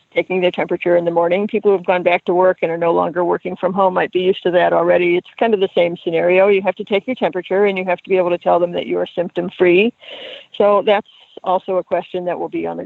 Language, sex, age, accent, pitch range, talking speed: English, female, 50-69, American, 180-200 Hz, 290 wpm